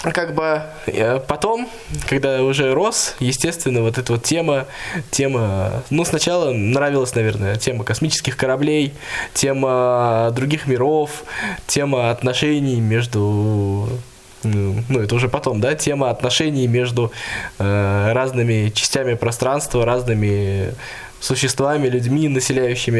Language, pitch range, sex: Russian, 115-140 Hz, male